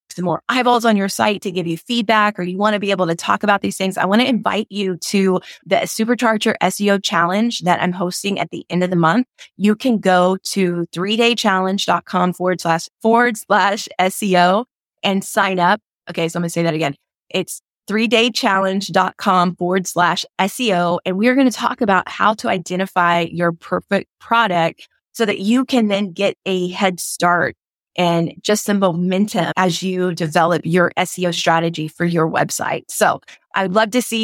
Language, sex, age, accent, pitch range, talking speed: English, female, 20-39, American, 175-210 Hz, 180 wpm